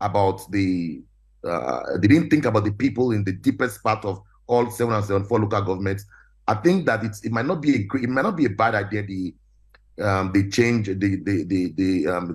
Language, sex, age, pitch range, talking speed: English, male, 30-49, 100-125 Hz, 225 wpm